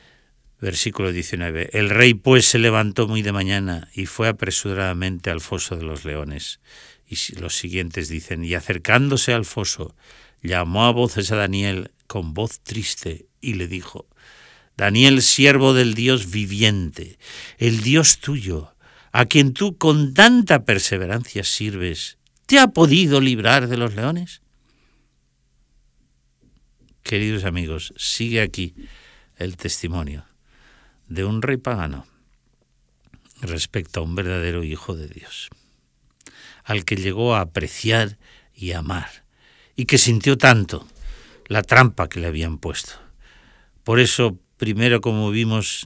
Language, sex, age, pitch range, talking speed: Spanish, male, 60-79, 90-120 Hz, 130 wpm